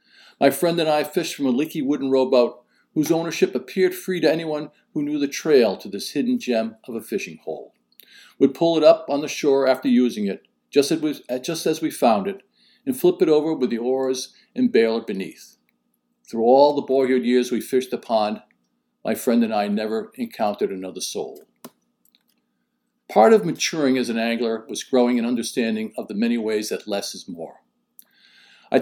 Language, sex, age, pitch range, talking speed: English, male, 50-69, 125-170 Hz, 185 wpm